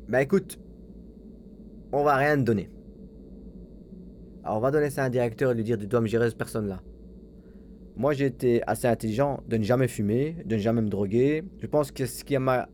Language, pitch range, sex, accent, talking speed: French, 110-145 Hz, male, French, 205 wpm